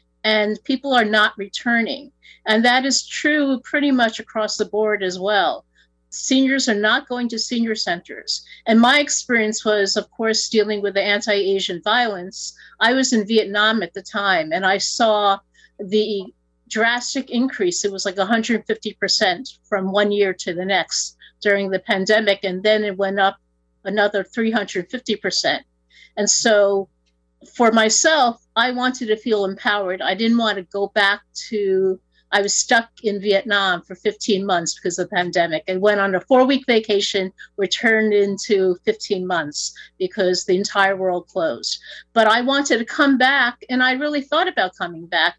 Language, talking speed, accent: English, 165 wpm, American